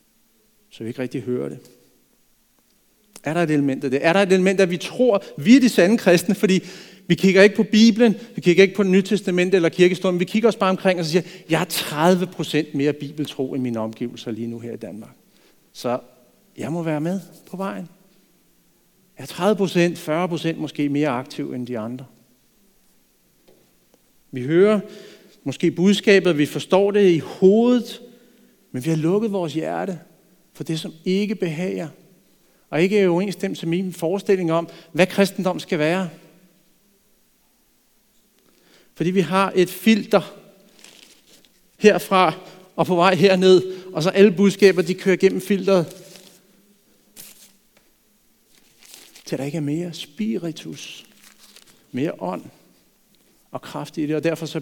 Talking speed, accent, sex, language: 160 wpm, native, male, Danish